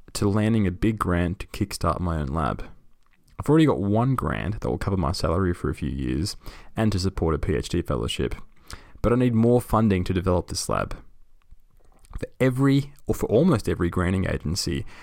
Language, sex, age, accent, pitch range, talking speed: English, male, 20-39, Australian, 90-110 Hz, 190 wpm